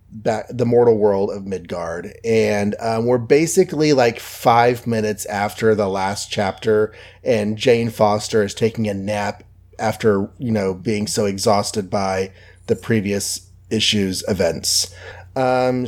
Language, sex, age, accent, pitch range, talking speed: English, male, 30-49, American, 105-130 Hz, 130 wpm